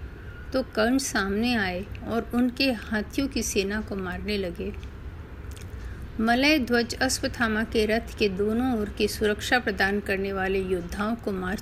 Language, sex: Hindi, female